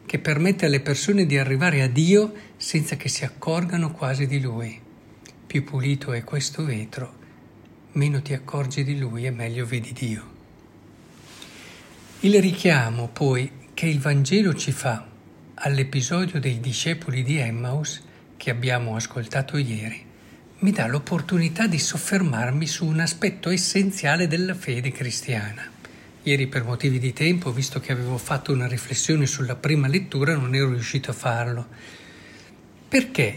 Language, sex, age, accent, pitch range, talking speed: Italian, male, 60-79, native, 125-170 Hz, 140 wpm